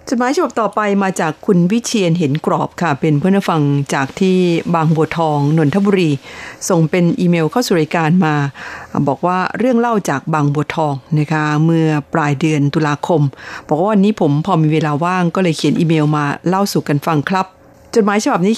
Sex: female